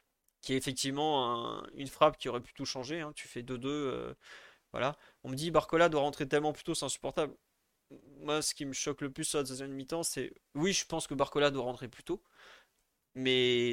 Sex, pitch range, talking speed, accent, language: male, 135-165 Hz, 220 wpm, French, French